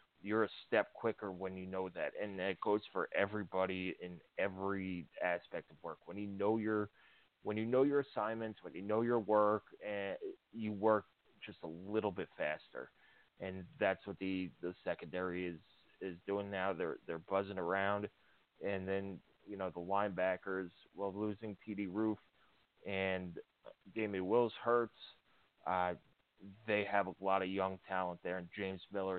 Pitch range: 90-105 Hz